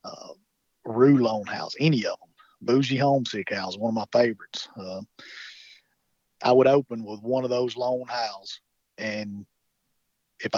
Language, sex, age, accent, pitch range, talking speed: English, male, 40-59, American, 110-125 Hz, 145 wpm